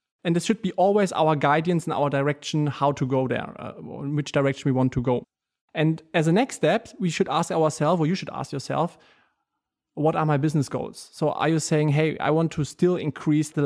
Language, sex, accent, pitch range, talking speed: English, male, German, 150-175 Hz, 225 wpm